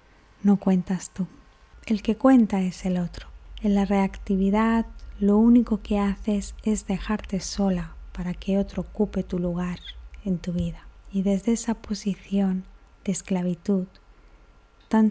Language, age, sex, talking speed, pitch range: Spanish, 20-39, female, 140 wpm, 180-210 Hz